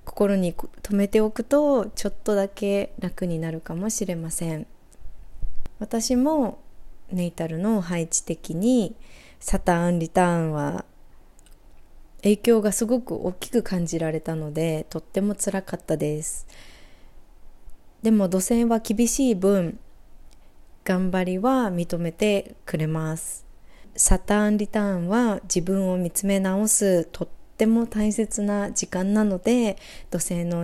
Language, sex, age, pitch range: Japanese, female, 20-39, 170-220 Hz